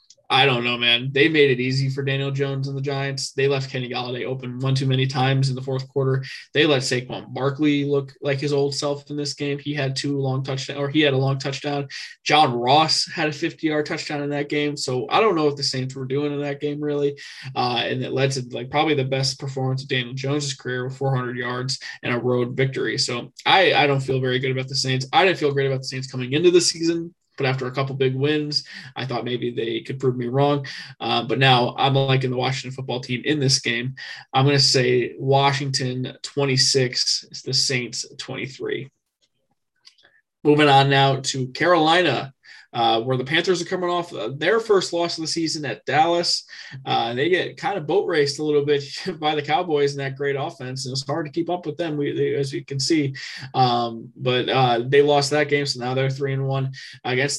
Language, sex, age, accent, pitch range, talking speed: English, male, 20-39, American, 130-145 Hz, 220 wpm